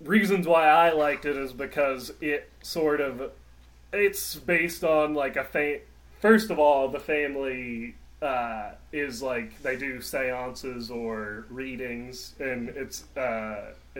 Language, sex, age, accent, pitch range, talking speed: English, male, 20-39, American, 115-145 Hz, 135 wpm